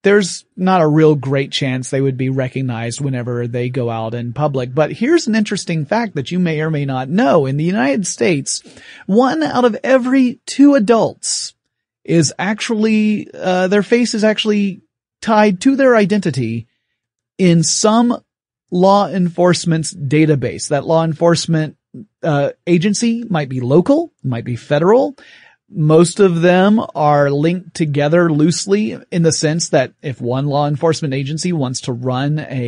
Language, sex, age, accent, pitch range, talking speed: English, male, 30-49, American, 135-185 Hz, 155 wpm